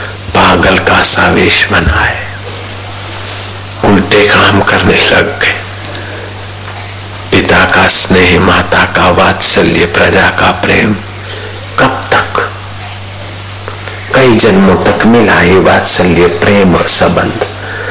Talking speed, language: 105 wpm, Hindi